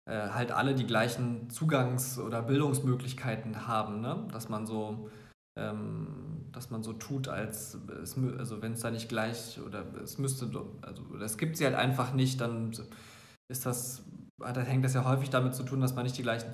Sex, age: male, 20-39